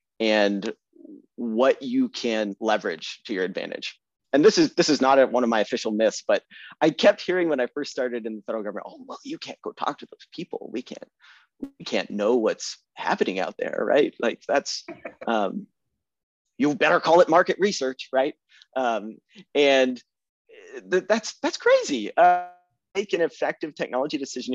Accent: American